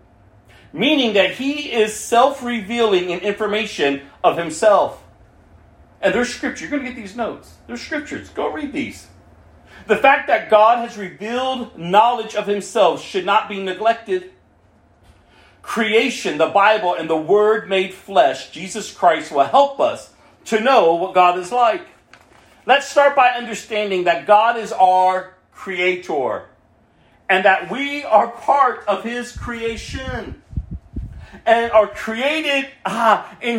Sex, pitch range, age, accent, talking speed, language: male, 175-250 Hz, 40-59, American, 140 wpm, English